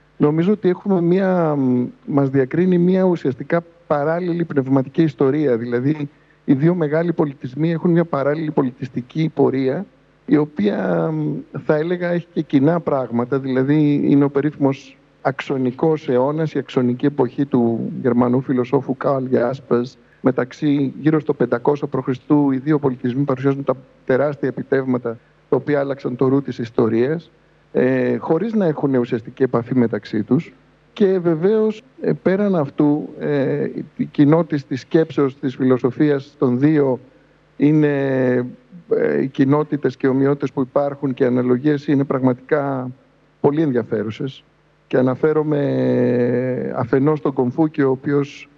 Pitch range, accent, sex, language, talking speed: 130-155 Hz, native, male, Greek, 120 wpm